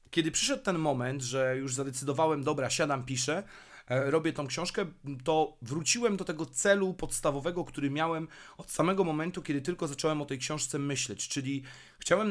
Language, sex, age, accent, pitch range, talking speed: Polish, male, 30-49, native, 130-160 Hz, 160 wpm